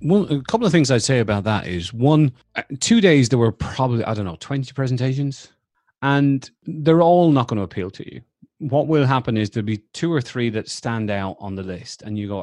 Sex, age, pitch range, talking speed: male, 30-49, 100-135 Hz, 230 wpm